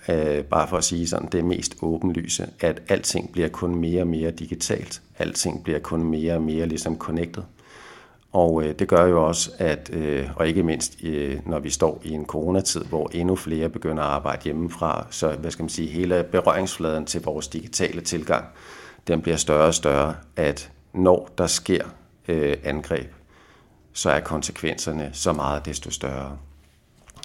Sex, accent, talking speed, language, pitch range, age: male, native, 165 wpm, Danish, 75-85 Hz, 50-69